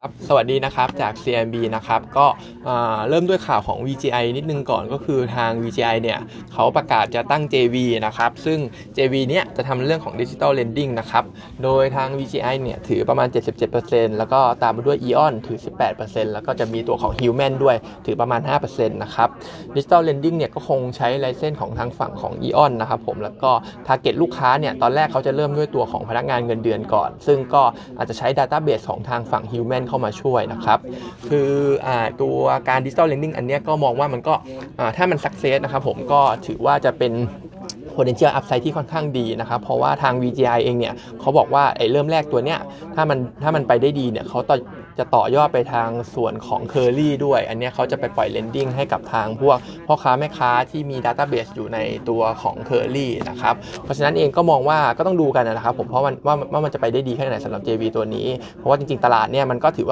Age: 20-39